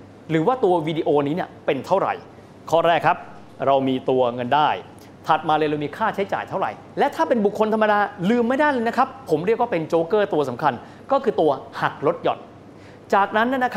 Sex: male